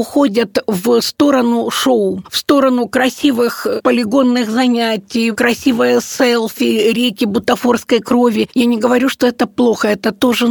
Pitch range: 225-255 Hz